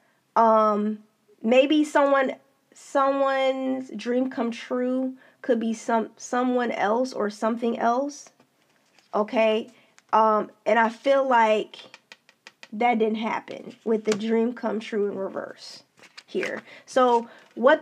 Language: English